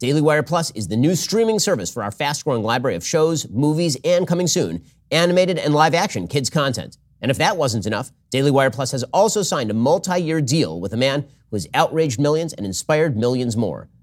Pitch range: 125-165 Hz